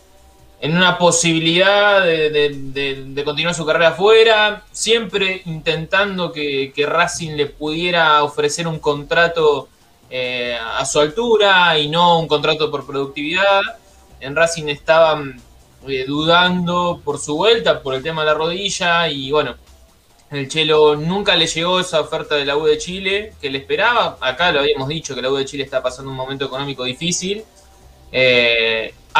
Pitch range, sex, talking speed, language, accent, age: 140-190 Hz, male, 155 wpm, Spanish, Argentinian, 20-39